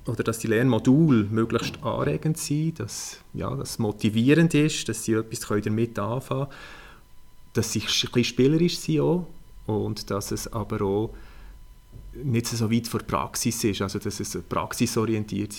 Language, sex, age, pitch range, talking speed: German, male, 30-49, 100-120 Hz, 150 wpm